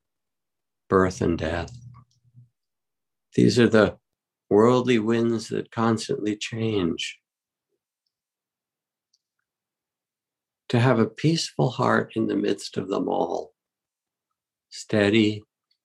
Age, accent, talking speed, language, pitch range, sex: 60-79, American, 85 wpm, English, 90-120 Hz, male